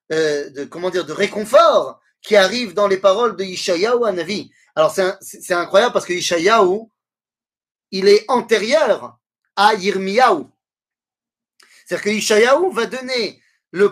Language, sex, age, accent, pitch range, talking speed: French, male, 30-49, French, 190-255 Hz, 140 wpm